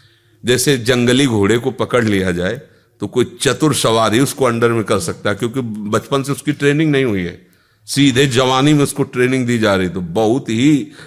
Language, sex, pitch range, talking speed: Hindi, male, 105-135 Hz, 200 wpm